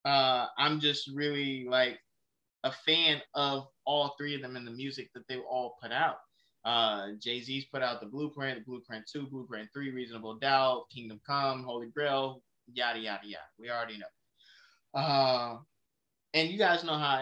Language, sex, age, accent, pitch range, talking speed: English, male, 20-39, American, 120-140 Hz, 170 wpm